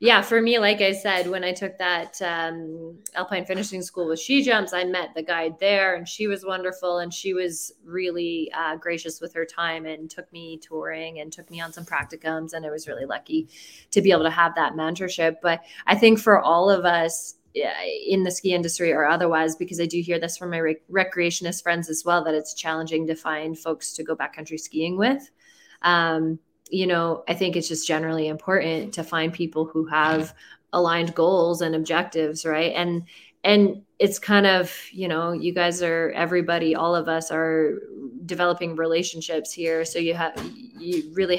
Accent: American